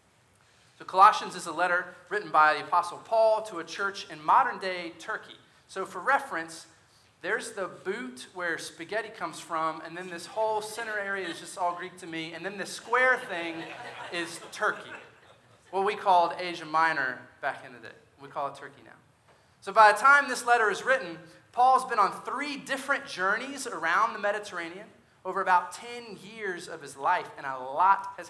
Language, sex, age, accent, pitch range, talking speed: English, male, 30-49, American, 155-210 Hz, 185 wpm